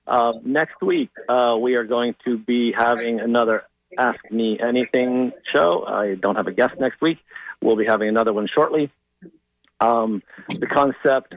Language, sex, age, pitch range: English, male, 50-69, 115-140 Hz